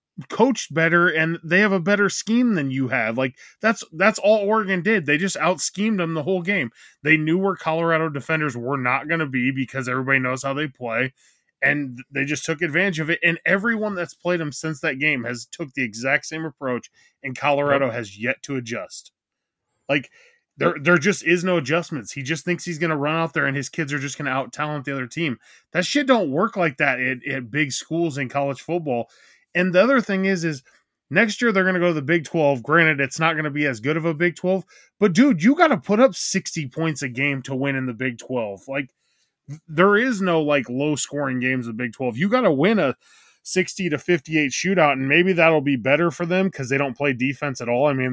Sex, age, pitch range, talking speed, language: male, 20-39, 130-175 Hz, 235 wpm, English